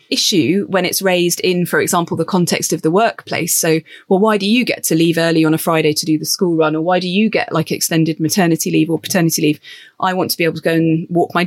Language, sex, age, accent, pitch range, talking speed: English, female, 30-49, British, 160-195 Hz, 265 wpm